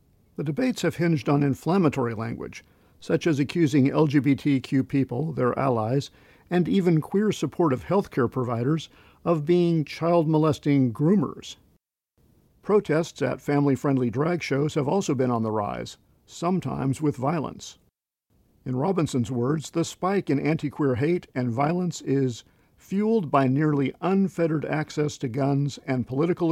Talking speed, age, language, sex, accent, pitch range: 135 wpm, 50-69, English, male, American, 130-165 Hz